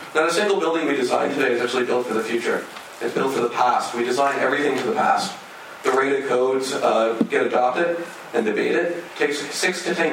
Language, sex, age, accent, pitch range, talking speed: English, male, 40-59, American, 125-155 Hz, 225 wpm